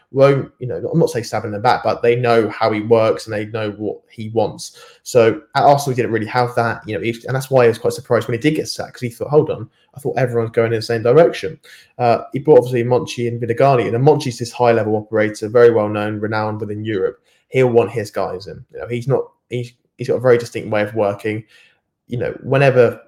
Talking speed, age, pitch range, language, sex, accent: 245 wpm, 20-39, 110-130 Hz, English, male, British